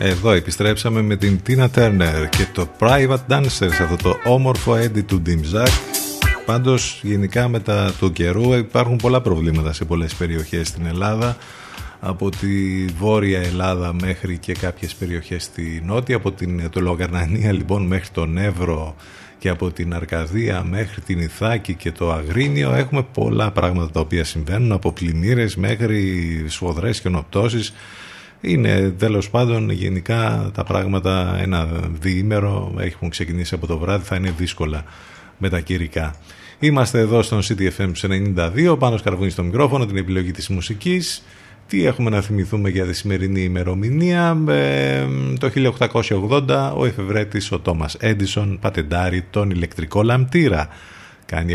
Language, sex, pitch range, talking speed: Greek, male, 85-110 Hz, 140 wpm